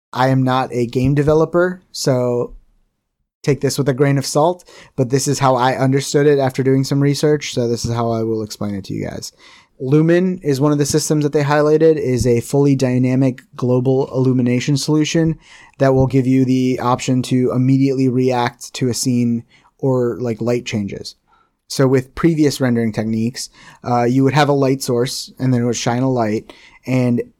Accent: American